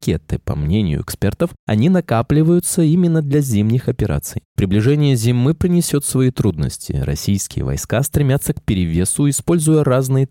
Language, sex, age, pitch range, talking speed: Russian, male, 20-39, 105-150 Hz, 120 wpm